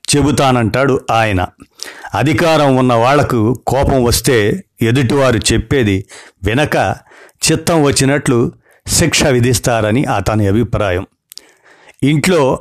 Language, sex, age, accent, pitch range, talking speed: Telugu, male, 50-69, native, 110-140 Hz, 80 wpm